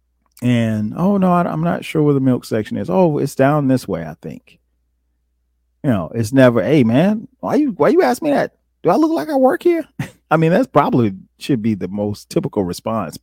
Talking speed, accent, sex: 220 wpm, American, male